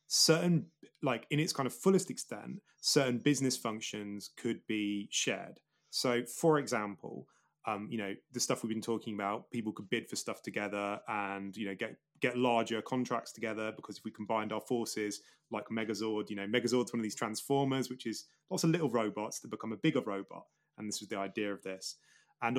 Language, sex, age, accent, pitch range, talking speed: English, male, 30-49, British, 105-130 Hz, 195 wpm